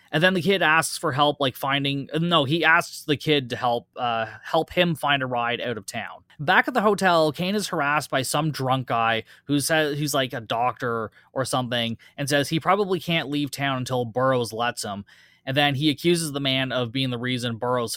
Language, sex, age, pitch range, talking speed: English, male, 20-39, 120-155 Hz, 215 wpm